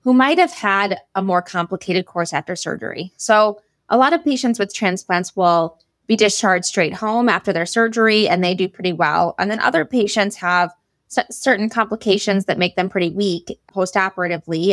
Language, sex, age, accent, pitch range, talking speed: English, female, 20-39, American, 175-210 Hz, 175 wpm